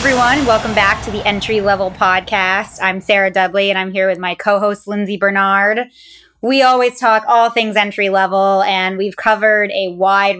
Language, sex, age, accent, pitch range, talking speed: English, female, 20-39, American, 190-225 Hz, 185 wpm